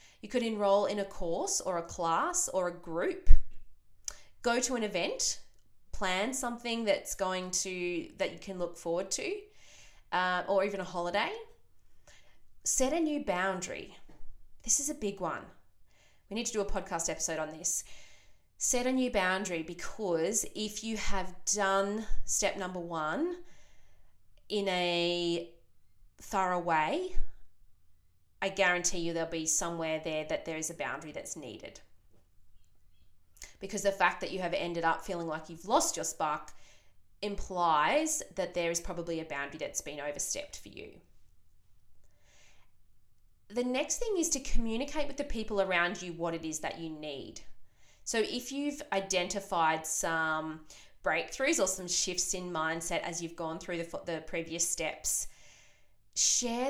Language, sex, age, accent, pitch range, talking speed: English, female, 20-39, Australian, 160-210 Hz, 150 wpm